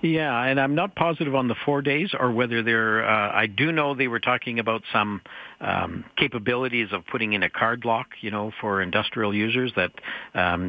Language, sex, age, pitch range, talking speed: English, male, 60-79, 100-115 Hz, 210 wpm